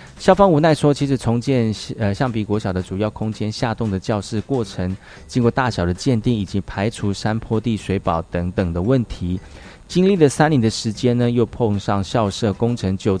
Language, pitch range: Chinese, 95-125 Hz